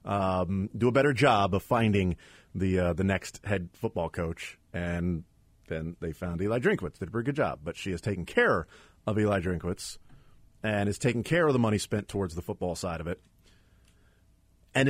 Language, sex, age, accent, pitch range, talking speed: English, male, 40-59, American, 95-120 Hz, 195 wpm